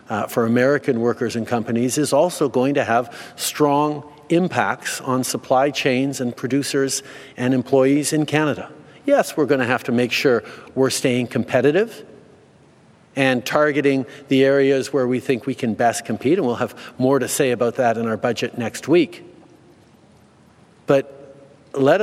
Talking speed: 160 wpm